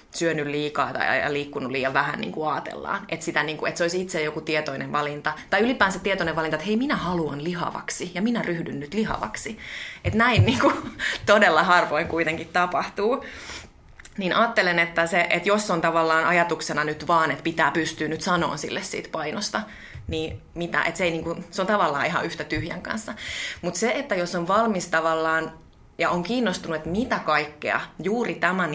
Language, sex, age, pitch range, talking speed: Finnish, female, 20-39, 155-195 Hz, 165 wpm